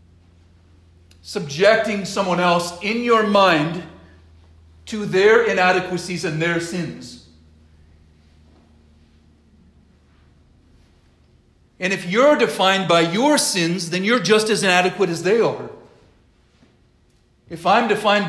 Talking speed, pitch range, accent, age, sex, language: 100 wpm, 130-200 Hz, American, 40-59, male, English